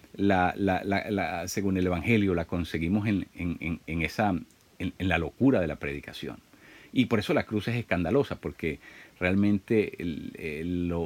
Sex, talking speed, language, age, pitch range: male, 120 wpm, Spanish, 50-69, 85-105 Hz